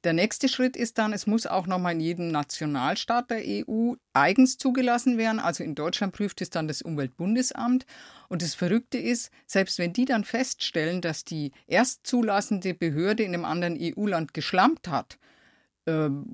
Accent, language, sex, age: German, German, female, 50-69